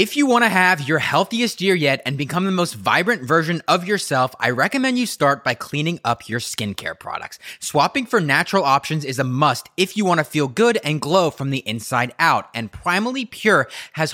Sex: male